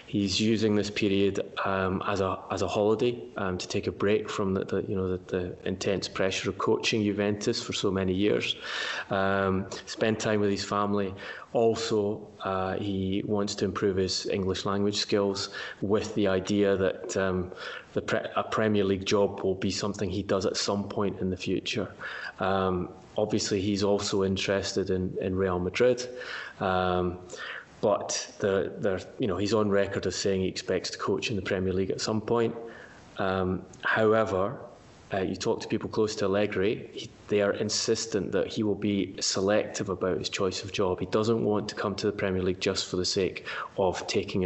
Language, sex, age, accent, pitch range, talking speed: English, male, 20-39, British, 95-105 Hz, 185 wpm